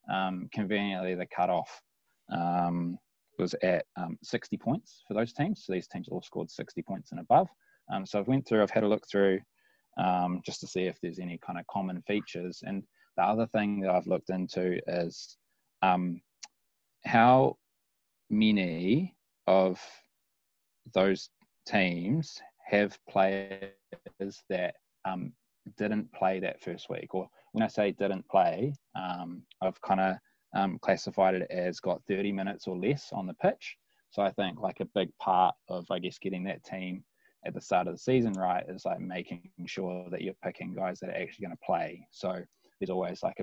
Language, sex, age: English, male, 20-39